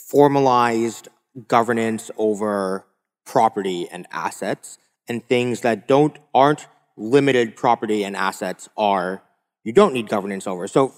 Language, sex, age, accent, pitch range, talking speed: English, male, 30-49, American, 110-135 Hz, 120 wpm